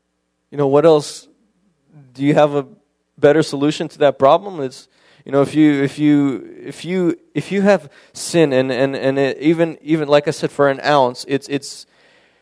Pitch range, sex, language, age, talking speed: 130-155 Hz, male, English, 20-39, 195 wpm